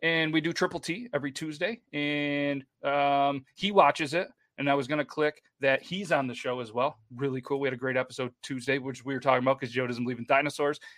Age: 30-49